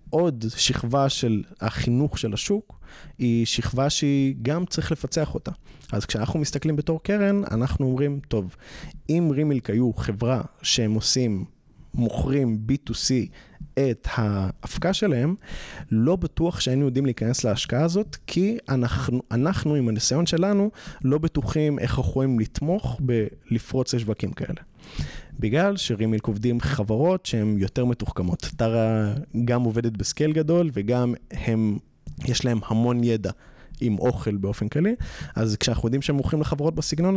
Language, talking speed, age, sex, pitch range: Hebrew, 135 wpm, 30-49, male, 110-150 Hz